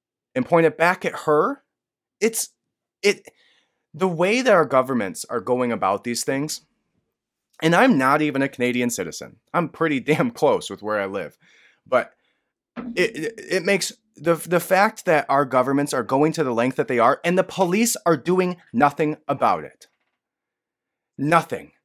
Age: 30-49